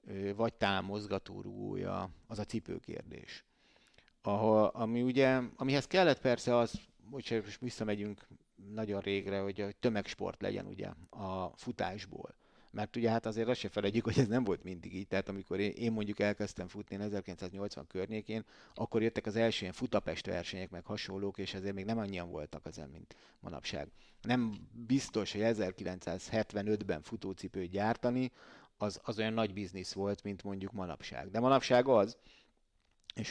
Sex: male